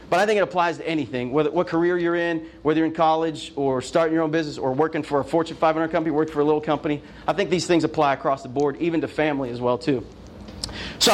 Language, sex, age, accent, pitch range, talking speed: English, male, 40-59, American, 150-180 Hz, 260 wpm